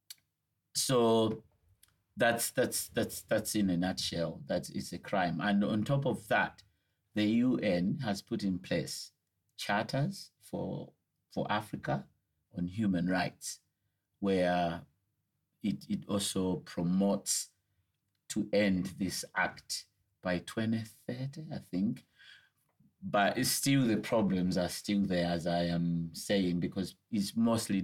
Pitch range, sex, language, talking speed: 90-105 Hz, male, English, 125 wpm